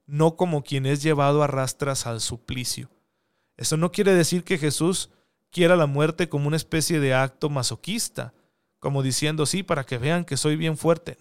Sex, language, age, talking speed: male, Spanish, 40-59, 180 wpm